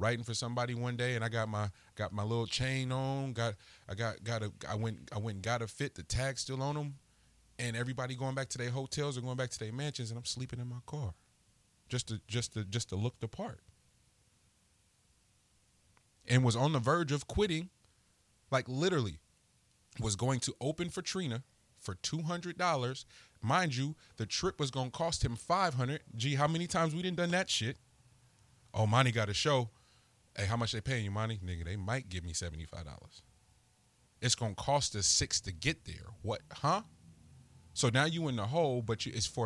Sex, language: male, English